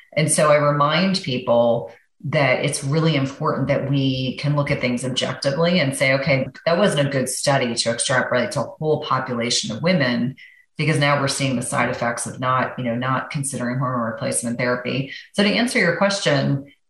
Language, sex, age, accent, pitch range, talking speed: English, female, 30-49, American, 130-150 Hz, 190 wpm